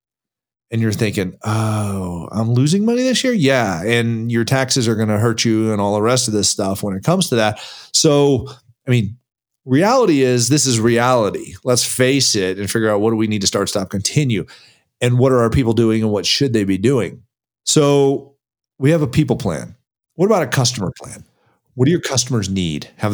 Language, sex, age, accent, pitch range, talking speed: English, male, 40-59, American, 110-135 Hz, 210 wpm